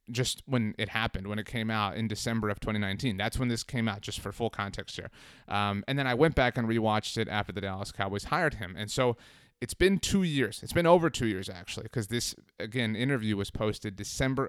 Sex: male